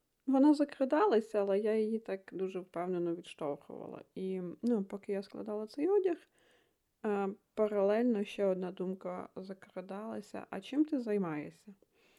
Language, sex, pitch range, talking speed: Ukrainian, female, 190-235 Hz, 125 wpm